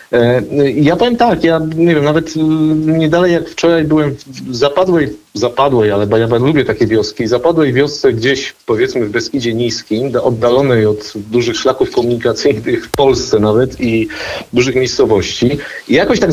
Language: Polish